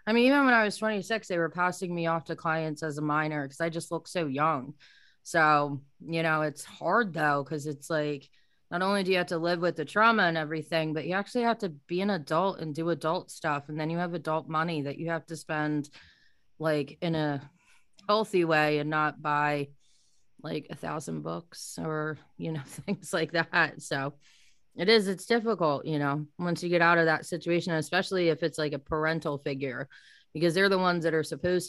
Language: English